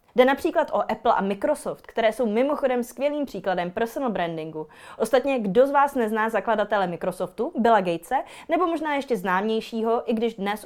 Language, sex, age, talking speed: Czech, female, 20-39, 165 wpm